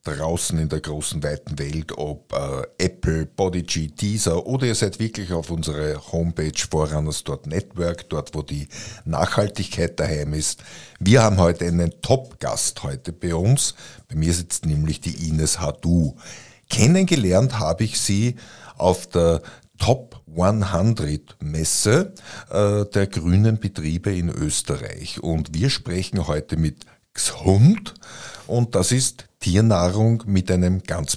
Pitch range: 80-115 Hz